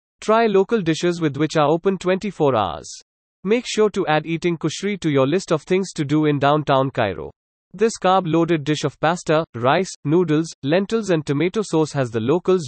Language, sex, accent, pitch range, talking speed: English, male, Indian, 145-185 Hz, 185 wpm